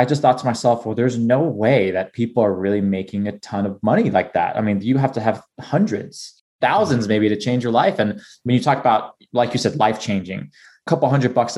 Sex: male